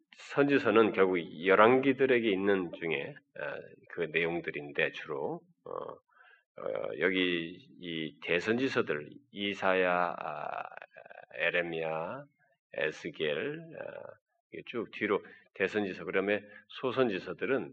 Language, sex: Korean, male